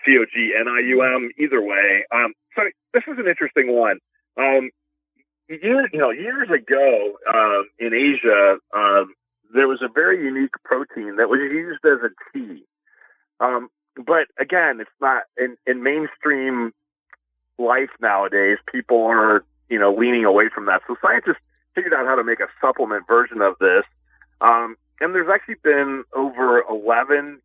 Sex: male